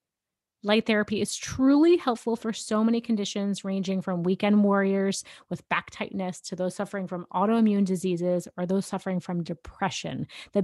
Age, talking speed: 30-49, 160 wpm